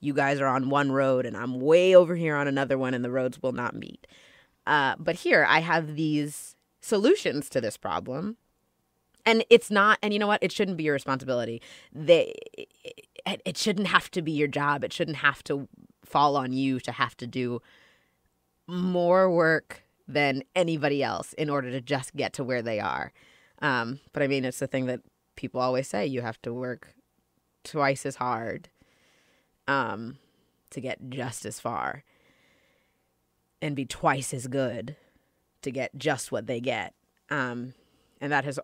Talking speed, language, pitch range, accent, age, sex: 180 wpm, English, 130-160 Hz, American, 20-39, female